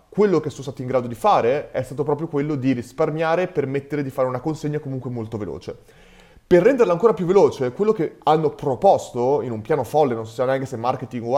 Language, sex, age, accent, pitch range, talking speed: Italian, male, 30-49, native, 125-150 Hz, 225 wpm